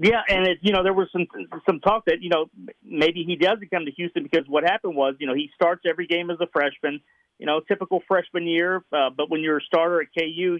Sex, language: male, English